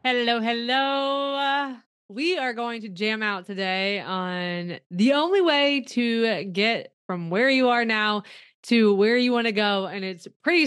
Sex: female